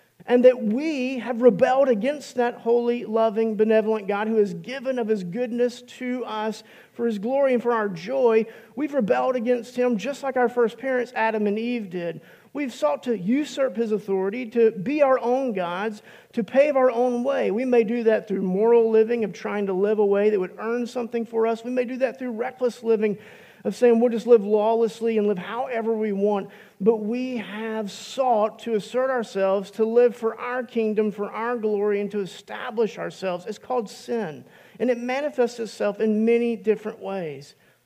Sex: male